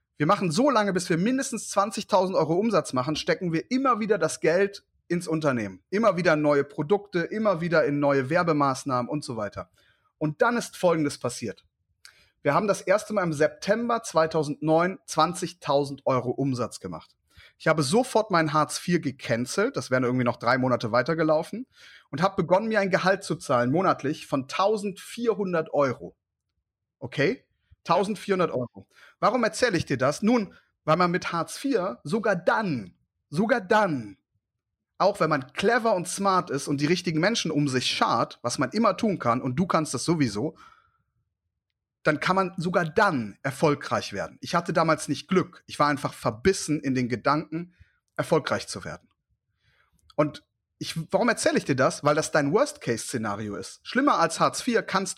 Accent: German